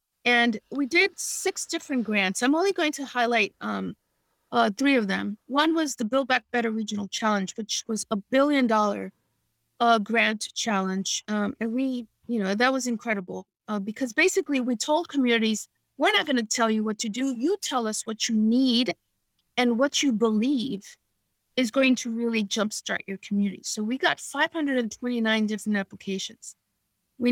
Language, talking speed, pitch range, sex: English, 175 wpm, 215-270 Hz, female